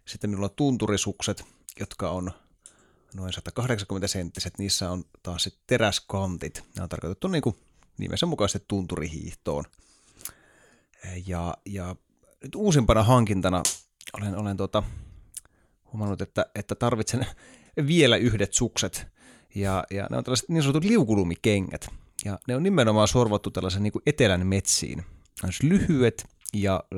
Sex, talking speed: male, 130 wpm